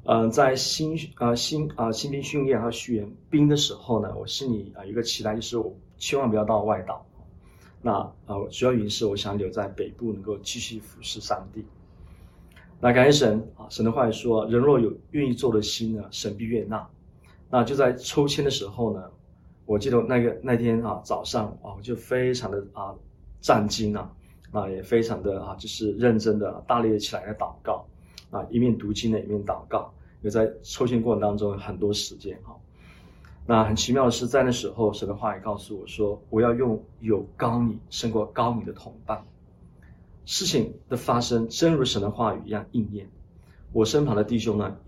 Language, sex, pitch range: Chinese, male, 105-125 Hz